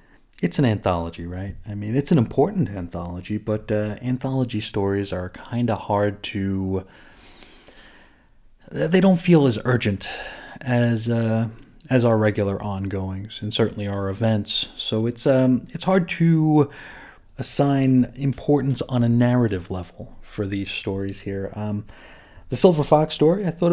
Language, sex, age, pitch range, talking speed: English, male, 30-49, 105-125 Hz, 145 wpm